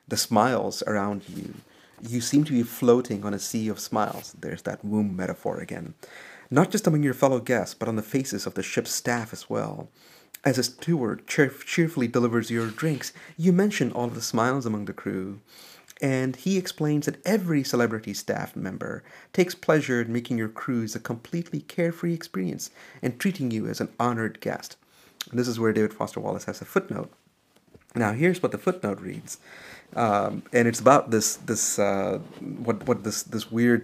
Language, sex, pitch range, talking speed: English, male, 110-150 Hz, 180 wpm